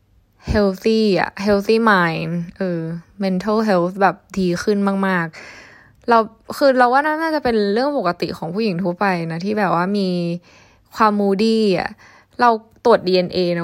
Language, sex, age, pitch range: Thai, female, 10-29, 175-215 Hz